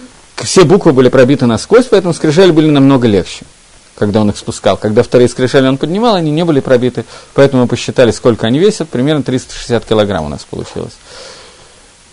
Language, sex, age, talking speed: Russian, male, 40-59, 175 wpm